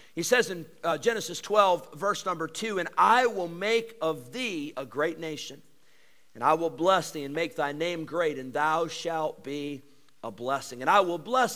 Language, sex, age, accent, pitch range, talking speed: English, male, 50-69, American, 145-185 Hz, 195 wpm